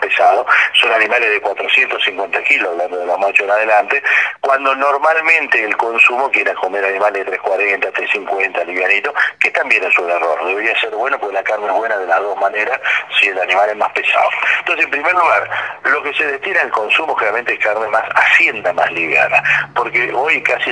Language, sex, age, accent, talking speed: Spanish, male, 40-59, Argentinian, 195 wpm